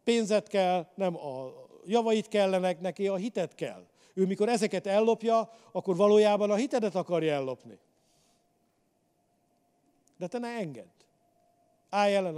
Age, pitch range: 50-69, 165-215 Hz